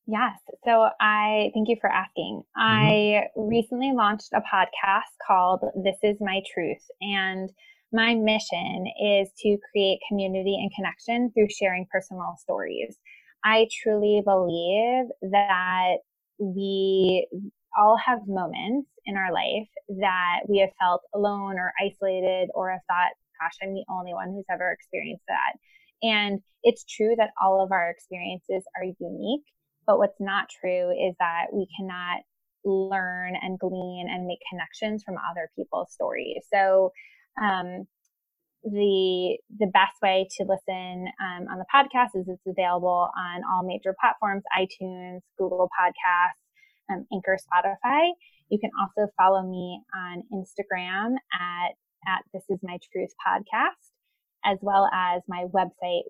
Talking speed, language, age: 140 wpm, English, 20-39